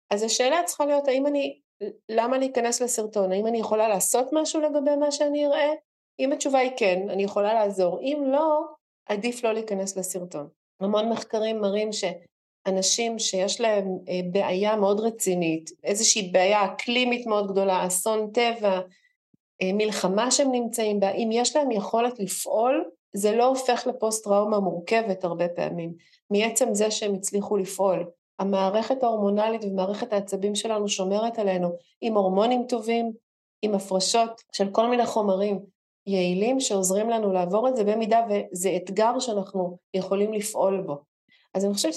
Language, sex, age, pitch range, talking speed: Hebrew, female, 40-59, 195-235 Hz, 145 wpm